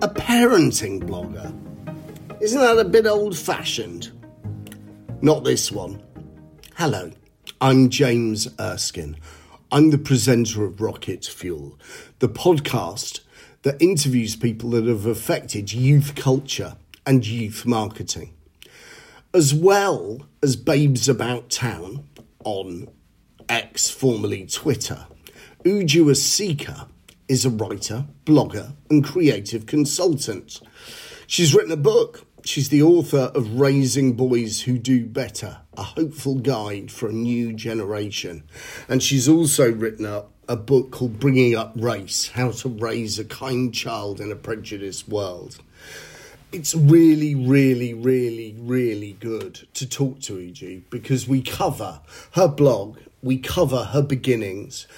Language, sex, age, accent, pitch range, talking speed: English, male, 40-59, British, 110-145 Hz, 125 wpm